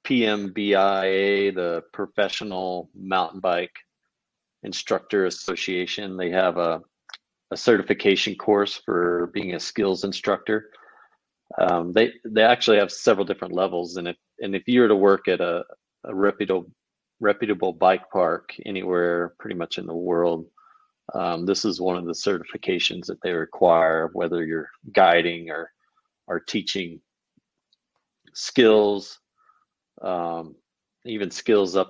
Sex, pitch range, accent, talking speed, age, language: male, 85-105 Hz, American, 130 wpm, 40-59, English